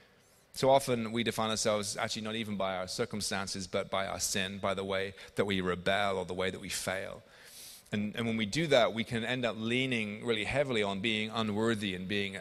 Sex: male